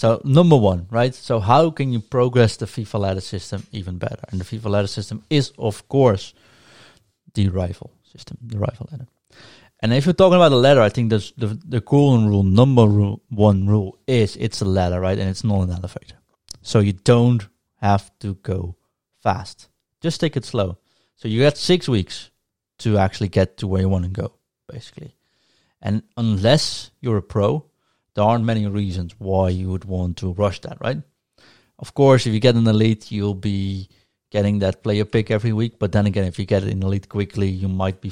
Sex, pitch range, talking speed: male, 95-120 Hz, 200 wpm